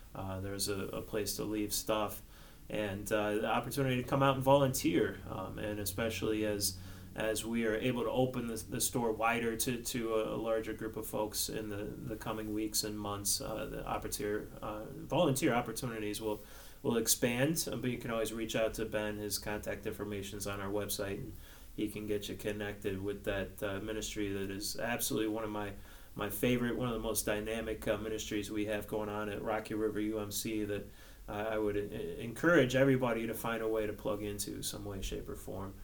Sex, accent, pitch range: male, American, 105-130 Hz